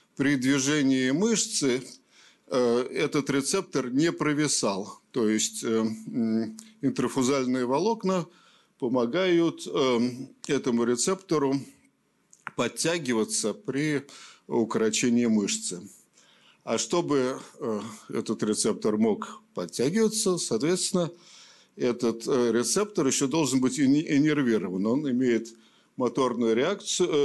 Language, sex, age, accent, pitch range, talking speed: Russian, male, 50-69, native, 115-160 Hz, 75 wpm